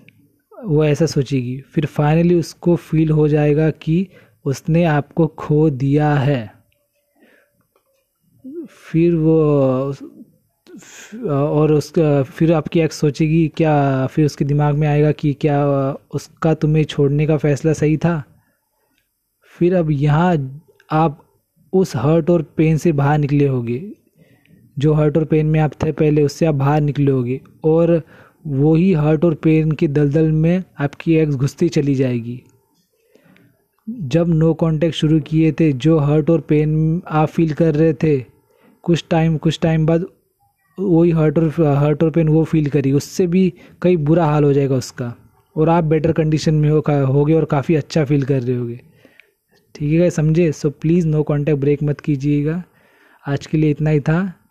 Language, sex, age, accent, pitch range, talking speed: Hindi, male, 20-39, native, 145-165 Hz, 155 wpm